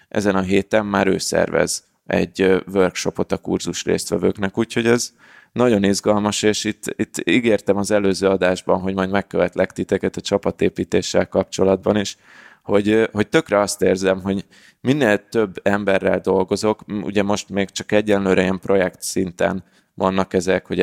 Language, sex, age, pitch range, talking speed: Hungarian, male, 20-39, 95-110 Hz, 145 wpm